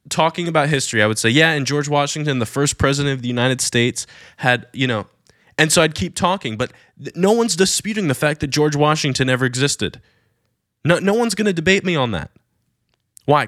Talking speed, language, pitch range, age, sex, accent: 205 wpm, English, 115-145 Hz, 20-39, male, American